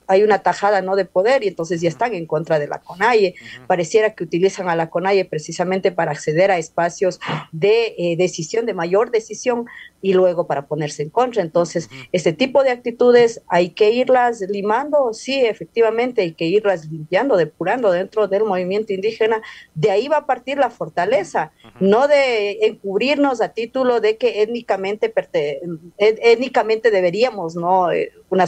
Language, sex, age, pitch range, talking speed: Spanish, female, 40-59, 175-225 Hz, 165 wpm